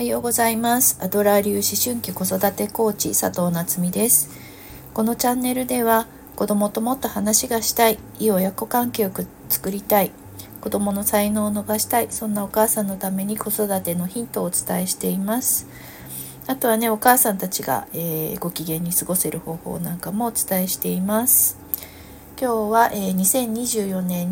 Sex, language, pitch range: female, Japanese, 165-215 Hz